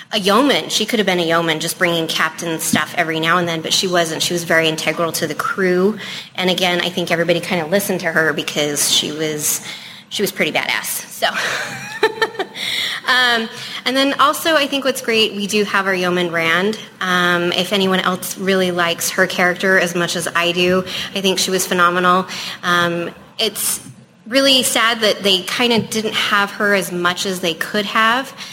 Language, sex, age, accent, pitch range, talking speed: English, female, 20-39, American, 175-205 Hz, 195 wpm